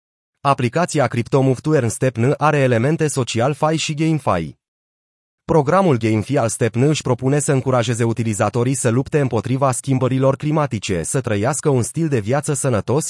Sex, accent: male, native